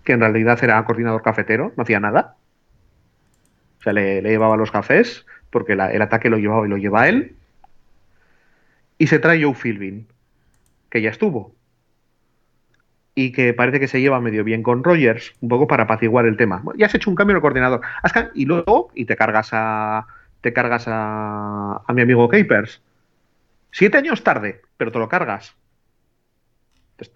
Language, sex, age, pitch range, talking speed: Spanish, male, 30-49, 110-150 Hz, 180 wpm